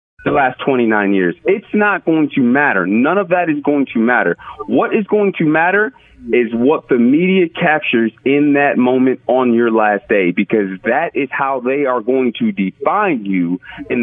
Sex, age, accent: male, 30-49, American